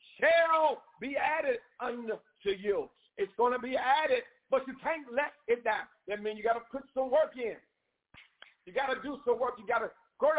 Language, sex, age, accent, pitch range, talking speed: English, male, 50-69, American, 240-335 Hz, 200 wpm